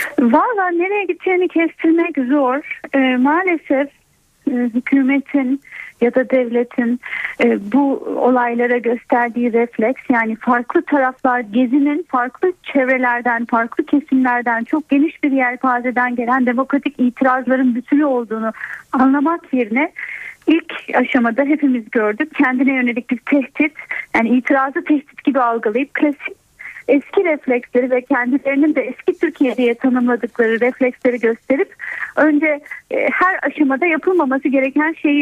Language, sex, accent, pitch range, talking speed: Turkish, female, native, 245-315 Hz, 110 wpm